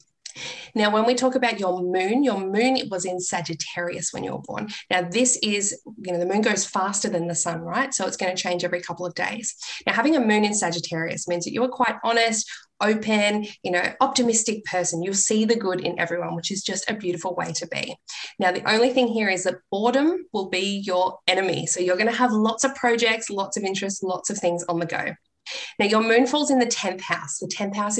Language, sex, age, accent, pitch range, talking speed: English, female, 20-39, Australian, 180-225 Hz, 235 wpm